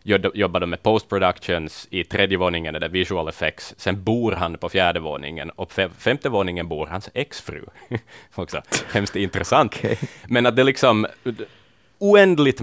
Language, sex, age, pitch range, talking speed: Swedish, male, 30-49, 85-105 Hz, 145 wpm